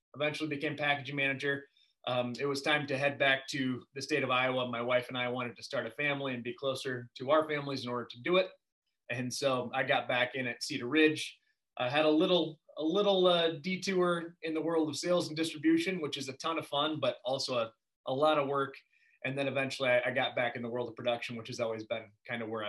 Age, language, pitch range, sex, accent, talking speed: 20-39, English, 135-165 Hz, male, American, 245 wpm